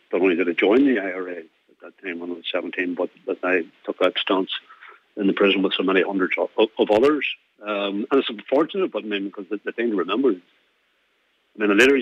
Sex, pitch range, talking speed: male, 100-125 Hz, 240 wpm